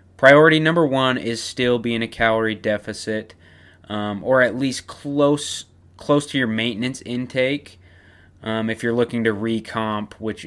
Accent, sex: American, male